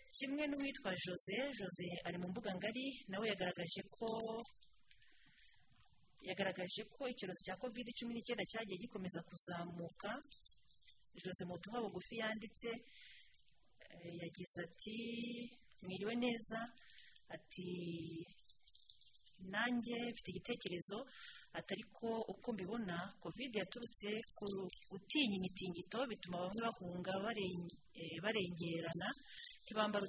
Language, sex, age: French, female, 30-49